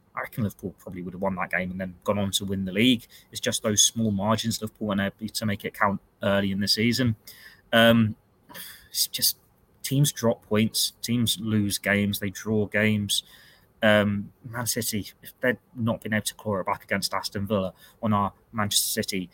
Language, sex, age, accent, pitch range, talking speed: English, male, 20-39, British, 105-115 Hz, 195 wpm